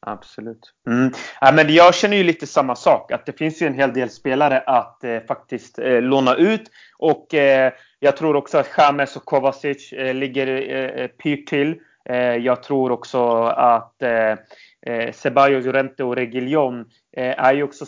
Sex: male